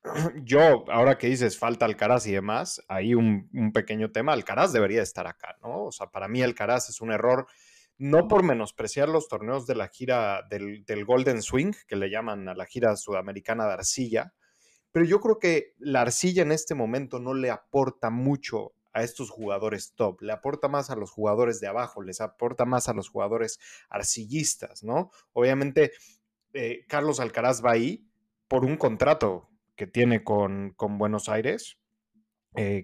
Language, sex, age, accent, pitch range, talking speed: Spanish, male, 30-49, Mexican, 105-140 Hz, 175 wpm